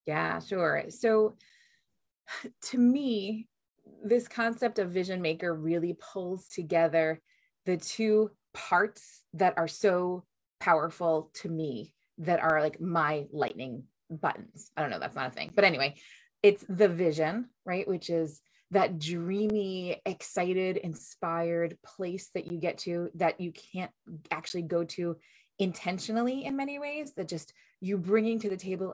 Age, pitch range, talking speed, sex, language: 20-39, 170-210 Hz, 145 wpm, female, English